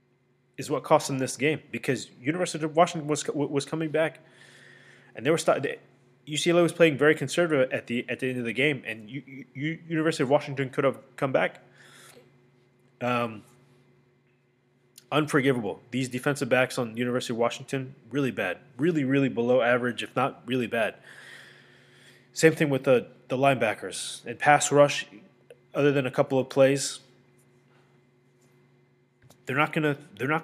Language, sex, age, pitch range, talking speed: English, male, 20-39, 125-140 Hz, 155 wpm